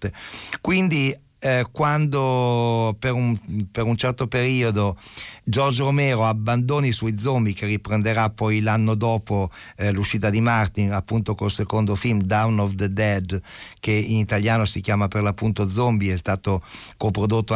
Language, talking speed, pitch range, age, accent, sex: Italian, 145 wpm, 105-125 Hz, 50-69, native, male